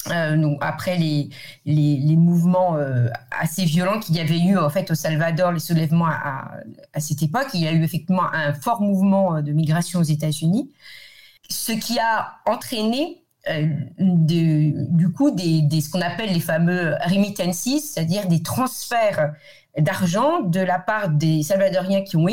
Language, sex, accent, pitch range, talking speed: French, female, French, 155-195 Hz, 170 wpm